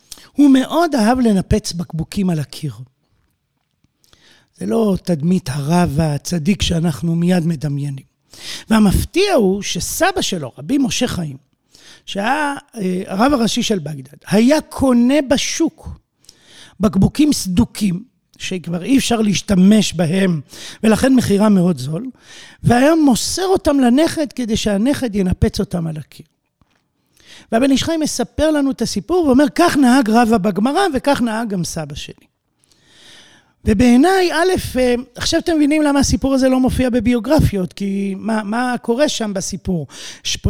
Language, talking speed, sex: Hebrew, 125 wpm, male